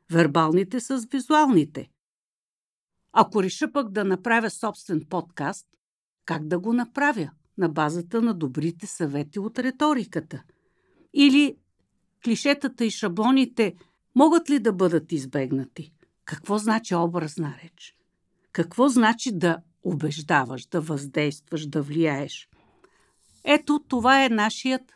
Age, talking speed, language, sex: 50-69, 110 wpm, Bulgarian, female